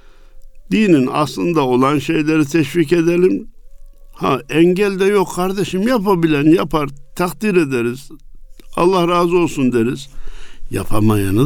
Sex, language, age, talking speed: male, Turkish, 60-79, 105 wpm